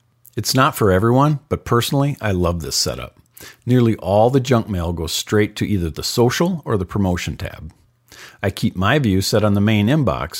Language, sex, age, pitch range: English, male, 50-69, 95-130 Hz